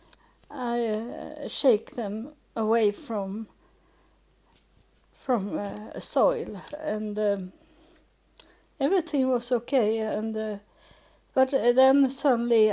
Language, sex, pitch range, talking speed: English, female, 210-255 Hz, 90 wpm